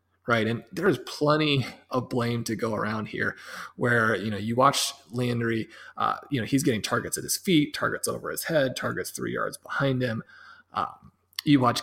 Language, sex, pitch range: English, male, 115-140 Hz